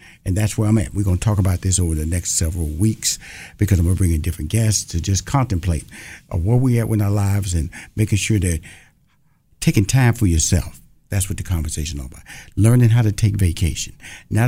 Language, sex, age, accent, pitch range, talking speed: English, male, 60-79, American, 85-110 Hz, 225 wpm